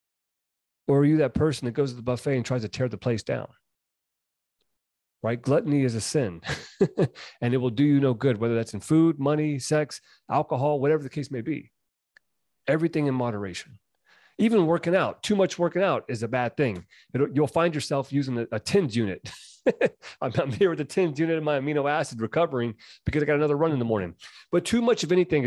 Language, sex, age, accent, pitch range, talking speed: English, male, 30-49, American, 115-150 Hz, 210 wpm